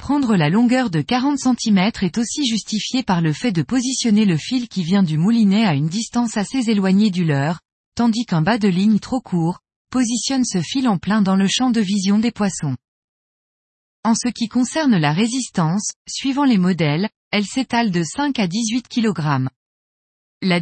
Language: French